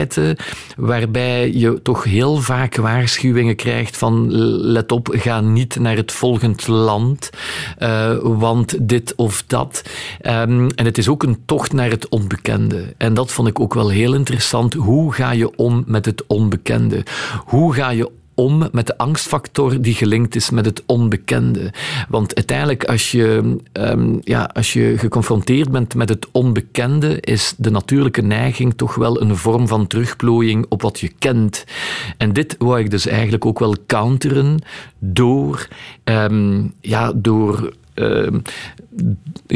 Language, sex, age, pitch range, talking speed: Dutch, male, 50-69, 110-125 Hz, 145 wpm